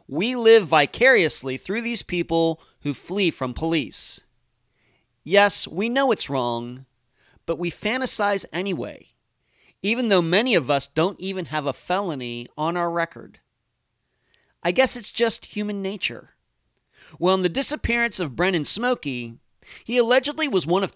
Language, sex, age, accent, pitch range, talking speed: English, male, 40-59, American, 135-200 Hz, 145 wpm